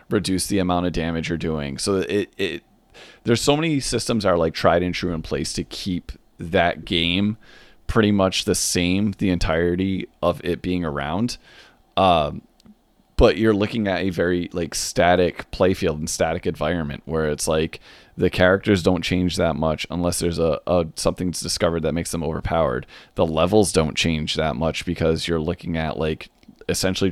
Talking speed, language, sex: 180 wpm, English, male